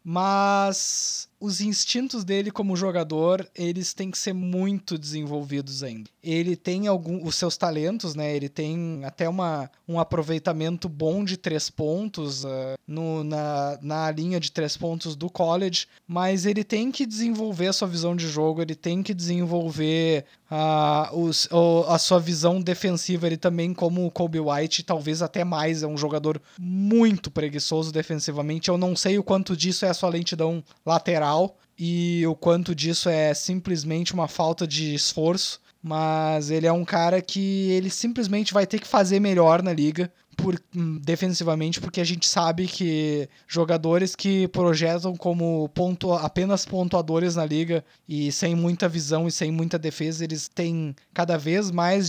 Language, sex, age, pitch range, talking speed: Portuguese, male, 20-39, 155-180 Hz, 150 wpm